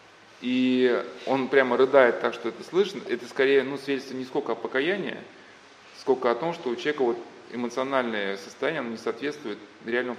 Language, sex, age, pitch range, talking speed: Russian, male, 20-39, 125-165 Hz, 165 wpm